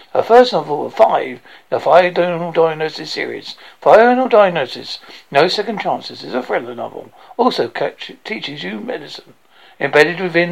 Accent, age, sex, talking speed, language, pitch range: British, 60-79, male, 145 wpm, English, 175-250 Hz